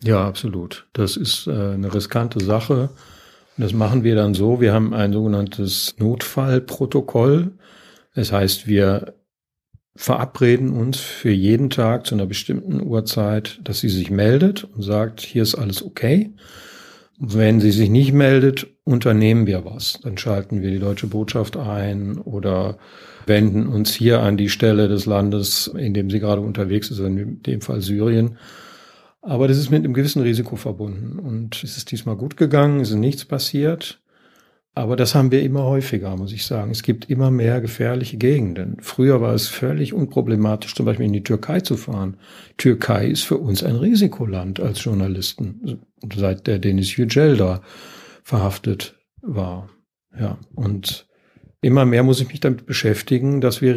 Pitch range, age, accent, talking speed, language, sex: 105-130 Hz, 50-69, German, 160 wpm, German, male